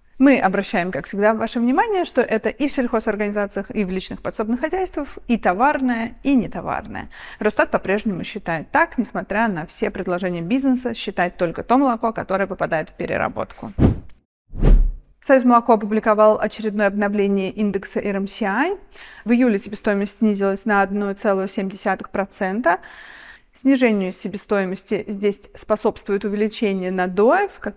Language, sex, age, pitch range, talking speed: Russian, female, 30-49, 195-245 Hz, 125 wpm